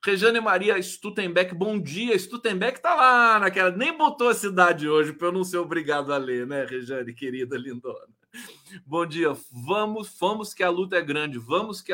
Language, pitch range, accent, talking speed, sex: Portuguese, 145-215 Hz, Brazilian, 180 wpm, male